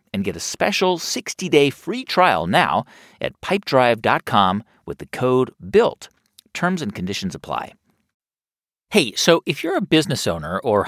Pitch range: 125-190 Hz